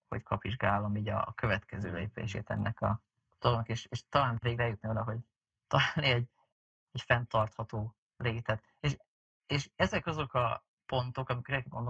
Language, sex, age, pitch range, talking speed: Hungarian, male, 30-49, 110-125 Hz, 140 wpm